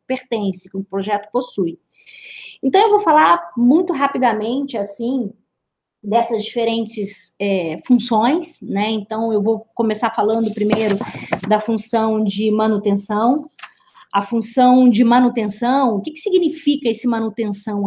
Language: Portuguese